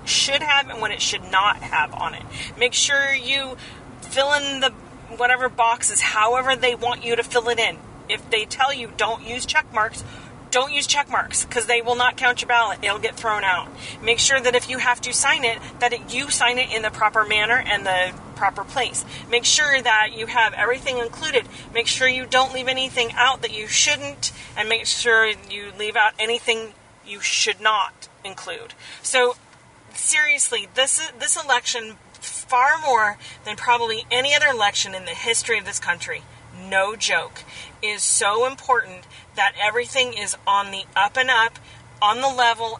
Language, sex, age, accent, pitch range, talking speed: English, female, 40-59, American, 220-260 Hz, 185 wpm